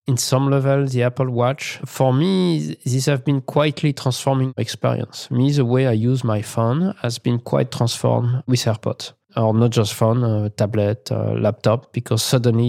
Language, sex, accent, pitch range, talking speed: English, male, French, 115-130 Hz, 175 wpm